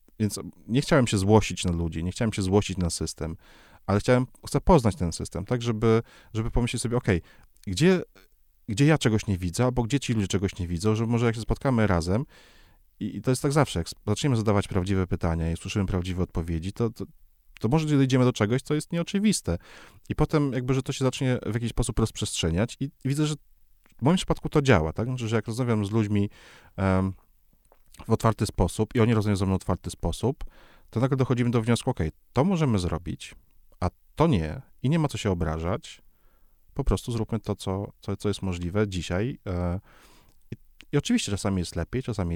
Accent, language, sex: native, Polish, male